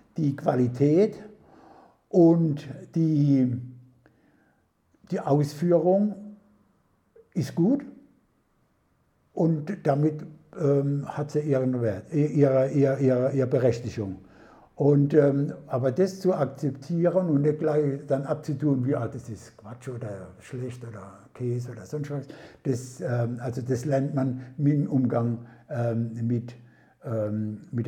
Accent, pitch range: German, 125-160 Hz